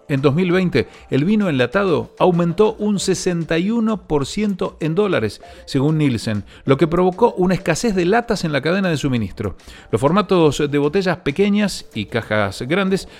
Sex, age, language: male, 40-59, Spanish